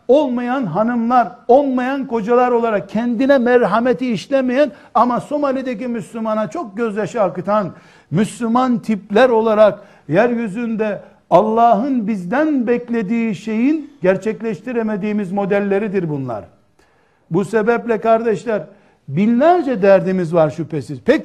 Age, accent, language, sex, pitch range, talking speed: 60-79, native, Turkish, male, 205-250 Hz, 95 wpm